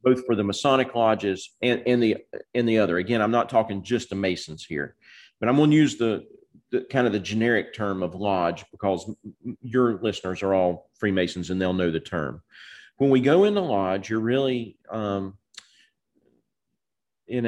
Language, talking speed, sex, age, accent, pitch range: English, 185 wpm, male, 40-59, American, 105-125 Hz